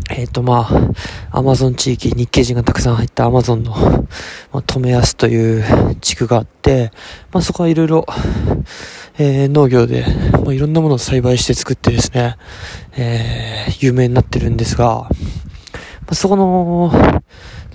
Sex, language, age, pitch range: male, Japanese, 20-39, 115-135 Hz